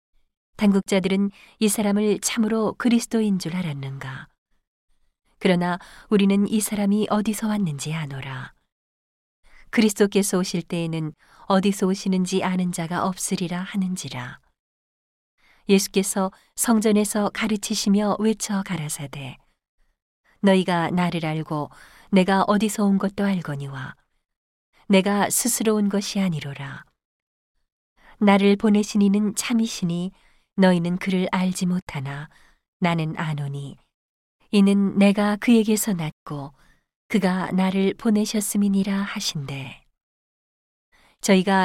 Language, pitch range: Korean, 170-205 Hz